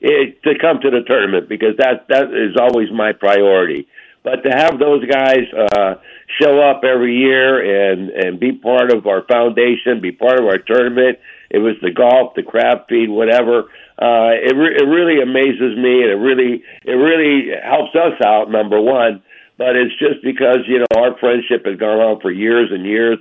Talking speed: 195 wpm